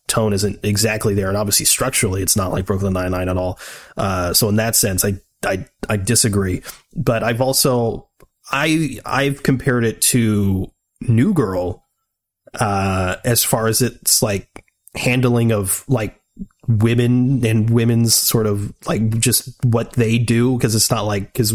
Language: English